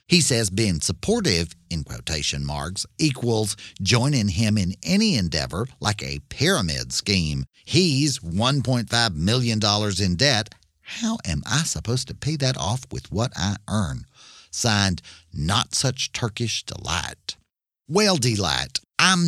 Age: 50-69